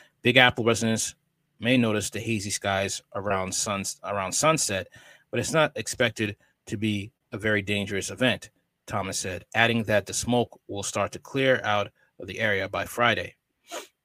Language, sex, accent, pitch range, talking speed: English, male, American, 100-125 Hz, 160 wpm